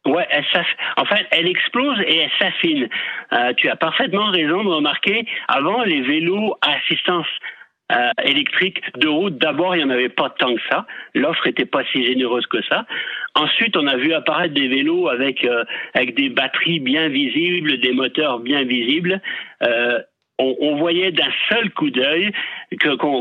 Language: French